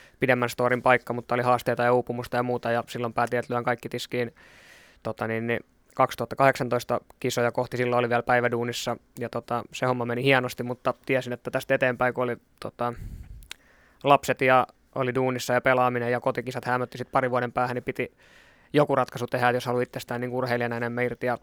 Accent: native